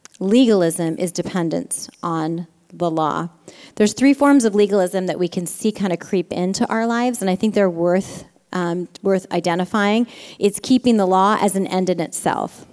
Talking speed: 180 wpm